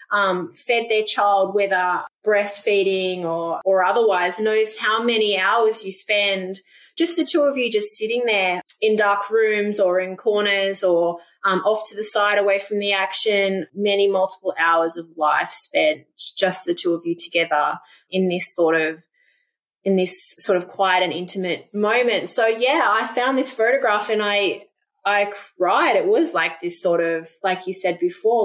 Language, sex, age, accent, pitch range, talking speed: English, female, 20-39, Australian, 185-220 Hz, 175 wpm